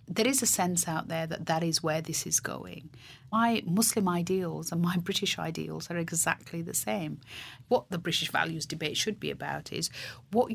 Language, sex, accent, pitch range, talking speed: English, female, British, 160-195 Hz, 195 wpm